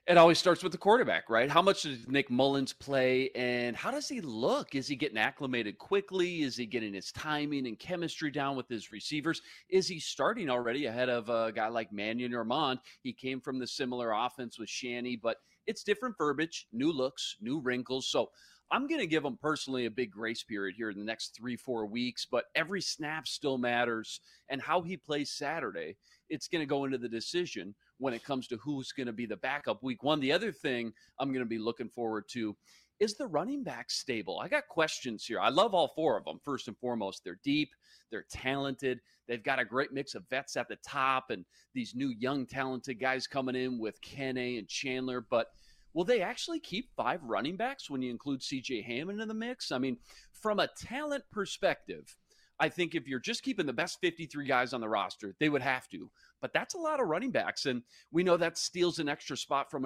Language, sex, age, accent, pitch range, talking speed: English, male, 30-49, American, 120-170 Hz, 220 wpm